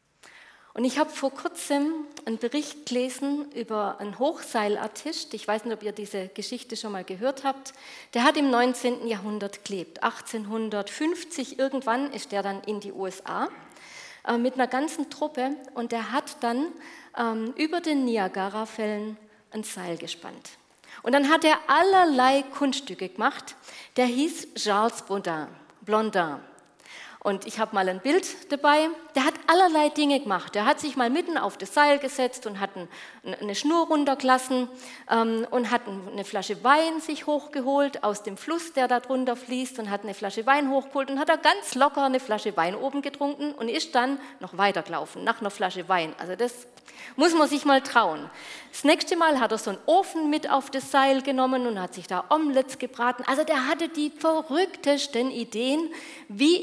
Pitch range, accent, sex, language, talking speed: 215-295 Hz, German, female, German, 175 wpm